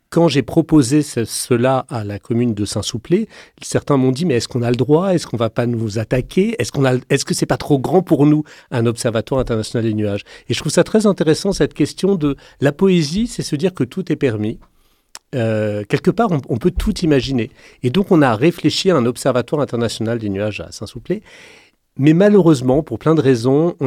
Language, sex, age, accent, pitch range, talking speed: French, male, 40-59, French, 115-155 Hz, 220 wpm